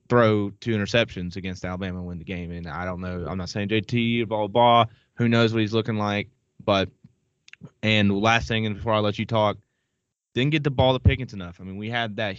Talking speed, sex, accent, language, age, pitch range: 235 wpm, male, American, English, 20-39, 95-115 Hz